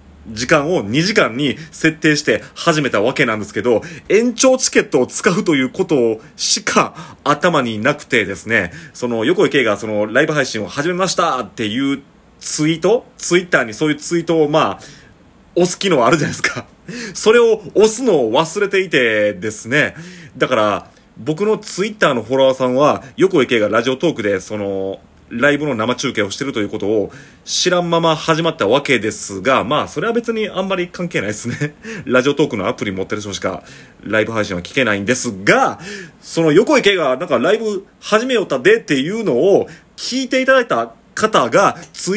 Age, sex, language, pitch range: 30-49, male, Japanese, 125-195 Hz